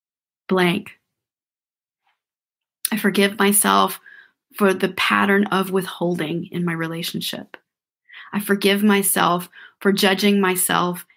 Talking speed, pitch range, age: 95 wpm, 185-210 Hz, 30-49